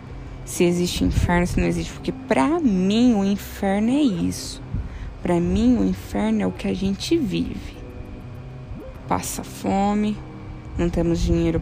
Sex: female